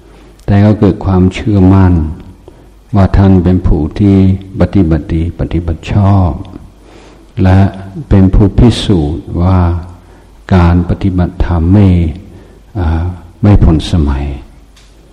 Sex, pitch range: male, 80-95 Hz